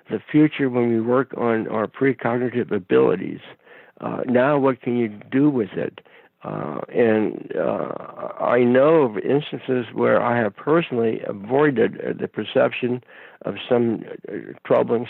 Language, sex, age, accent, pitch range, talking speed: English, male, 60-79, American, 115-140 Hz, 145 wpm